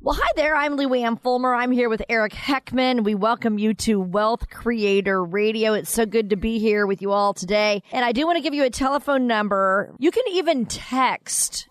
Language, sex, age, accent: English, female, 40-59, American